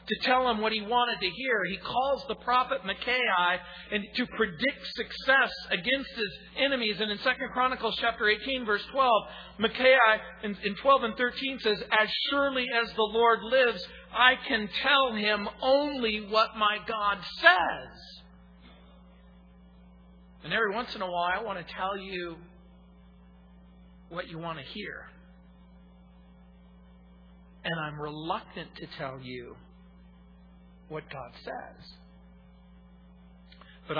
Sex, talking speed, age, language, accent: male, 130 wpm, 50-69, English, American